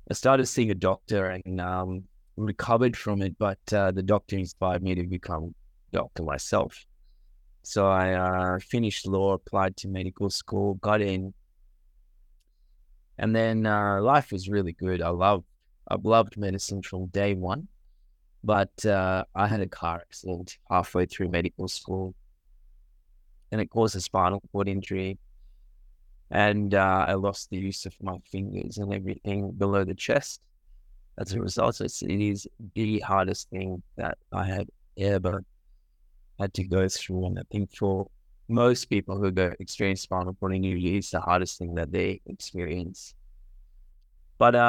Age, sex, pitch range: 20-39, male, 90-105 Hz